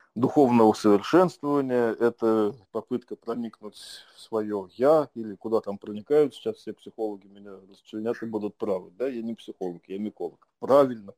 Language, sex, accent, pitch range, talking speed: Russian, male, native, 110-140 Hz, 145 wpm